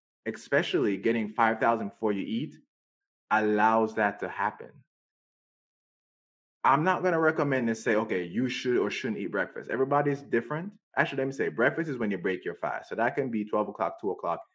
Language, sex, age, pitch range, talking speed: English, male, 20-39, 110-155 Hz, 185 wpm